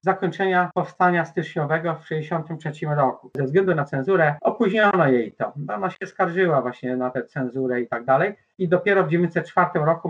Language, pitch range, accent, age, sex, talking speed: Polish, 145-170 Hz, native, 50-69, male, 170 wpm